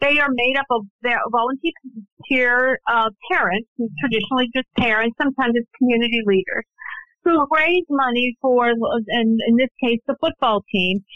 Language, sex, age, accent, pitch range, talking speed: English, female, 50-69, American, 225-285 Hz, 150 wpm